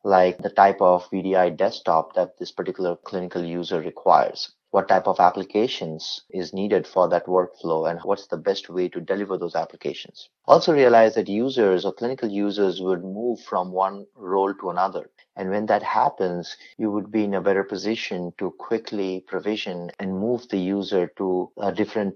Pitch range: 90-105 Hz